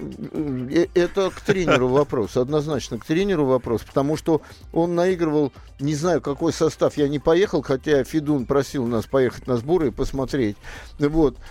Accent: native